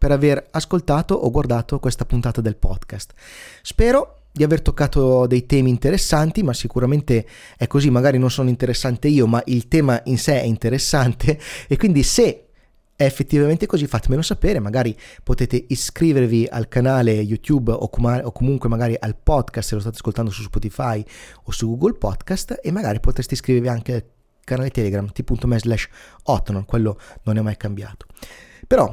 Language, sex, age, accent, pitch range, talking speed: Italian, male, 30-49, native, 115-155 Hz, 165 wpm